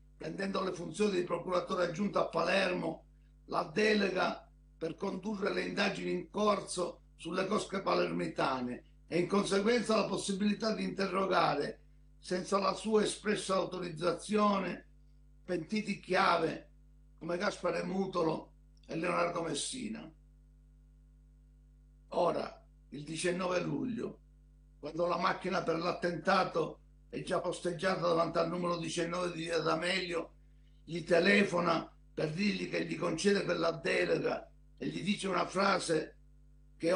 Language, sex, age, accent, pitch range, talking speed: Italian, male, 60-79, native, 170-195 Hz, 120 wpm